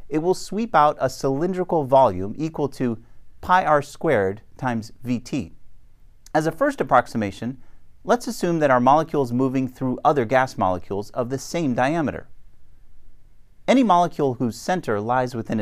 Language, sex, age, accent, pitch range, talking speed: English, male, 40-59, American, 110-170 Hz, 150 wpm